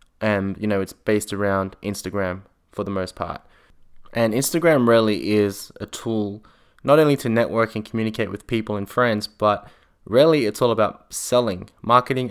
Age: 20-39